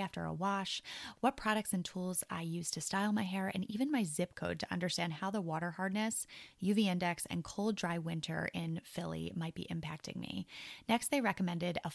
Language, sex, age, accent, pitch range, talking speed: English, female, 20-39, American, 165-210 Hz, 200 wpm